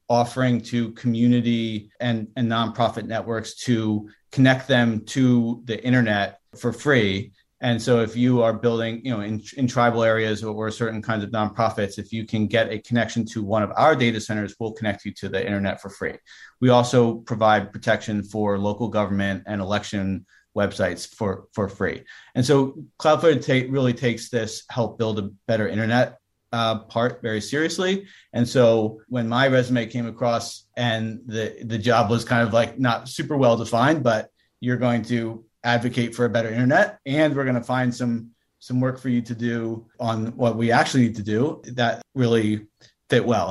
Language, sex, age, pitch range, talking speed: English, male, 40-59, 110-125 Hz, 180 wpm